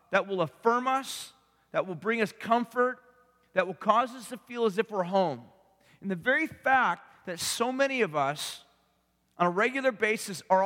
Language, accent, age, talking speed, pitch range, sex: English, American, 40-59, 185 wpm, 180-230 Hz, male